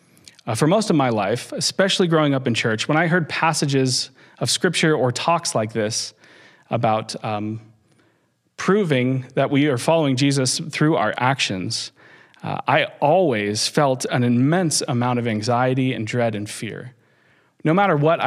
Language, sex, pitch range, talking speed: English, male, 120-155 Hz, 160 wpm